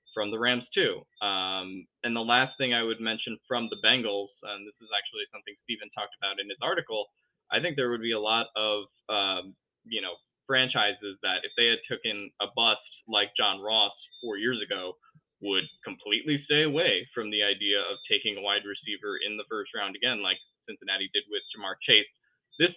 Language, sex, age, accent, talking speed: English, male, 20-39, American, 200 wpm